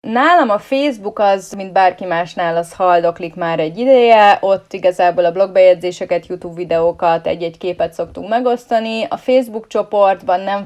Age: 30-49